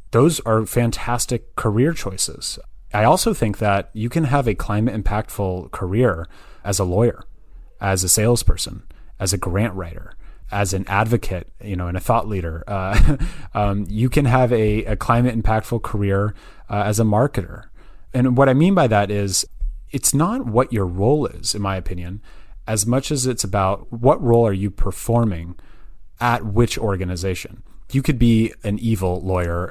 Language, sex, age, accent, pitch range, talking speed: English, male, 30-49, American, 95-120 Hz, 170 wpm